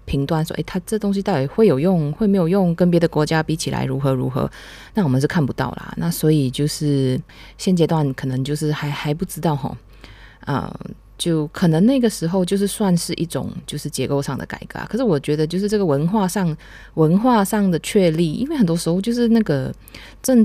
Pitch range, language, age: 145-195 Hz, Chinese, 20-39